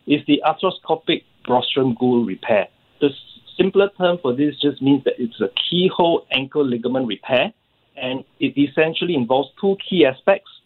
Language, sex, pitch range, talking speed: English, male, 125-170 Hz, 150 wpm